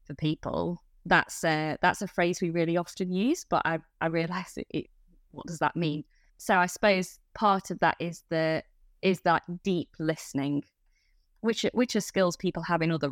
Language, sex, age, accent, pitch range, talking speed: English, female, 20-39, British, 160-185 Hz, 190 wpm